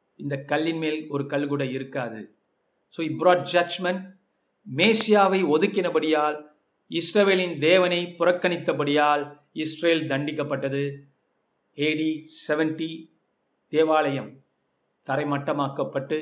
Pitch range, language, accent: 145-170 Hz, Tamil, native